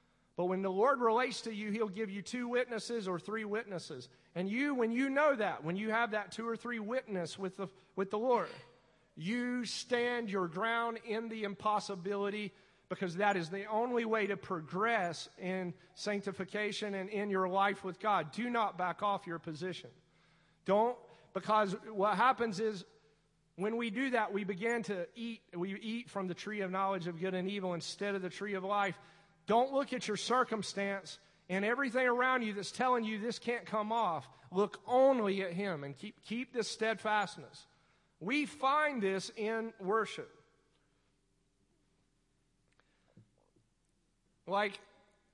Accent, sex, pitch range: American, male, 185-225 Hz